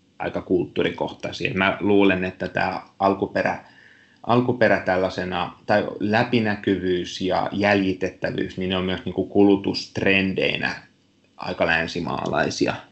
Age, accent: 30-49, native